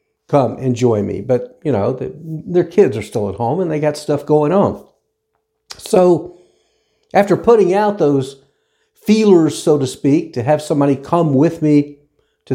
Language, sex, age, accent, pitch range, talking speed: English, male, 50-69, American, 135-185 Hz, 165 wpm